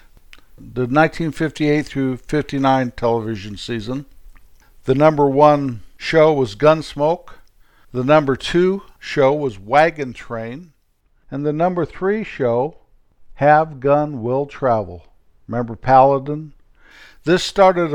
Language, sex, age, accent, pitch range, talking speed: English, male, 60-79, American, 125-150 Hz, 105 wpm